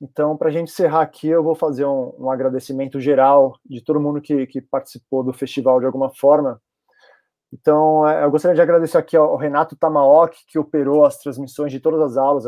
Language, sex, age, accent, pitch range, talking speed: Portuguese, male, 20-39, Brazilian, 135-160 Hz, 195 wpm